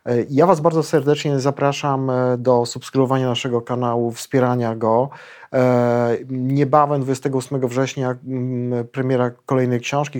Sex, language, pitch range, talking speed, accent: male, Polish, 120-135 Hz, 100 wpm, native